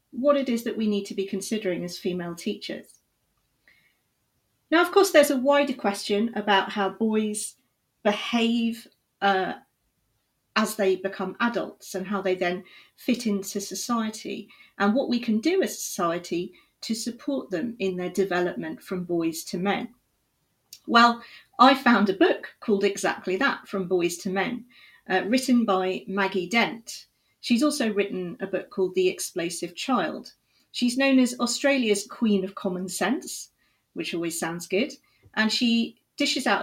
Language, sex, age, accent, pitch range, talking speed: English, female, 40-59, British, 190-250 Hz, 155 wpm